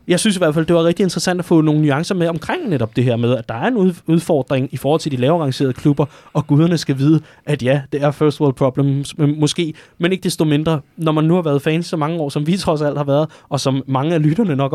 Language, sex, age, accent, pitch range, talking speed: Danish, male, 20-39, native, 125-155 Hz, 275 wpm